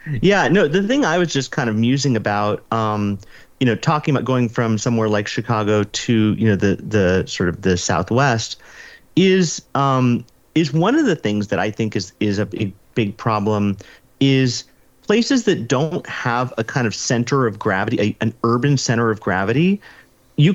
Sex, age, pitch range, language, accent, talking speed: male, 30-49, 110-155 Hz, English, American, 185 wpm